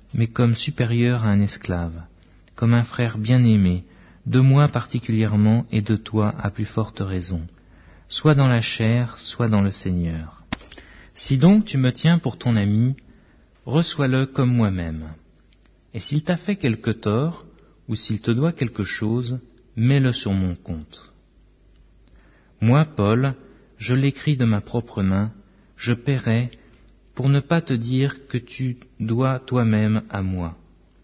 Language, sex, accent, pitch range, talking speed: French, male, French, 95-125 Hz, 145 wpm